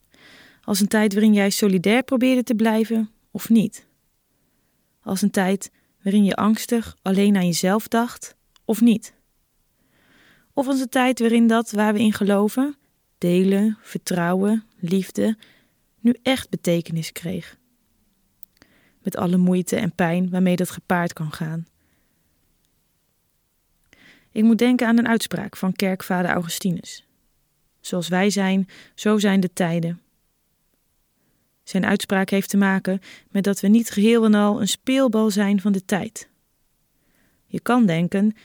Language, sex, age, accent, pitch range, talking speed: Dutch, female, 20-39, Dutch, 190-225 Hz, 135 wpm